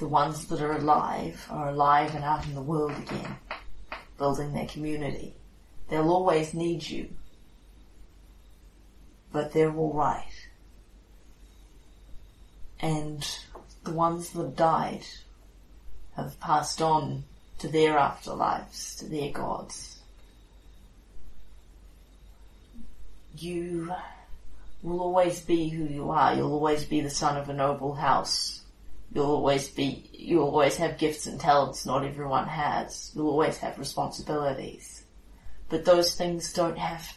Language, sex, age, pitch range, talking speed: English, female, 30-49, 100-160 Hz, 120 wpm